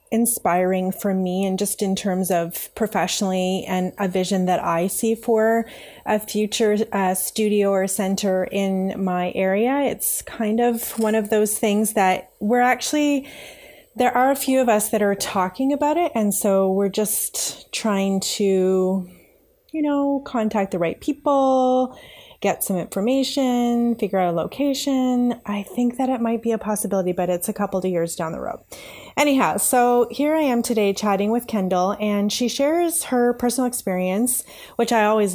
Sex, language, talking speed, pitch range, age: female, English, 170 wpm, 190-235 Hz, 30-49